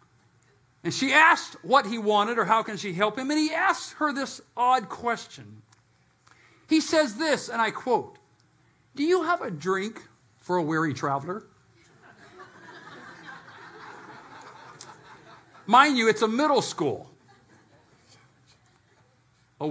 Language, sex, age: English, male, 60-79